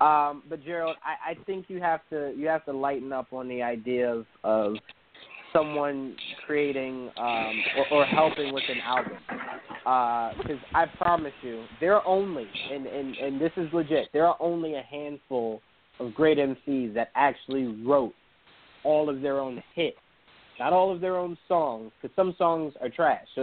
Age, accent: 20-39, American